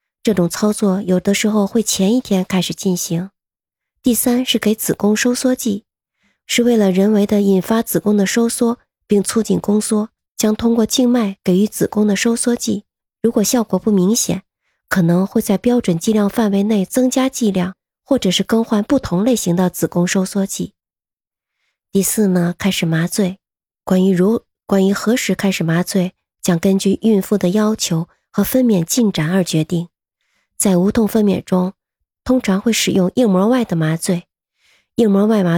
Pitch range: 185-220 Hz